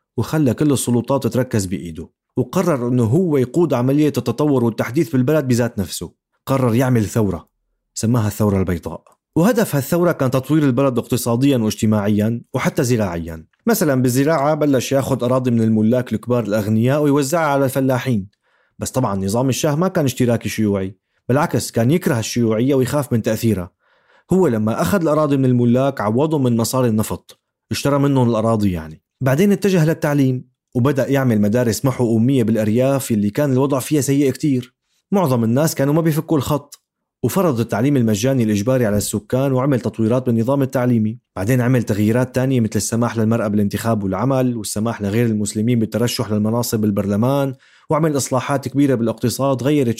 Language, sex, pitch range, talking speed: Arabic, male, 110-140 Hz, 145 wpm